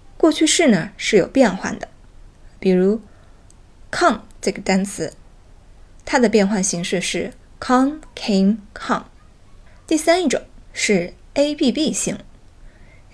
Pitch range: 190-255 Hz